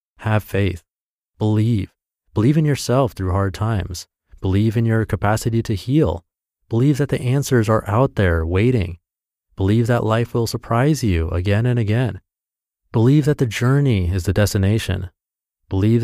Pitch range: 95-120 Hz